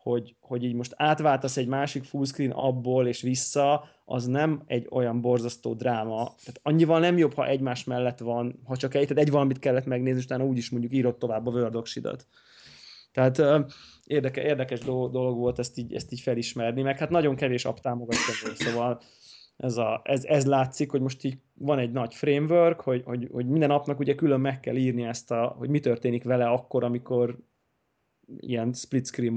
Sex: male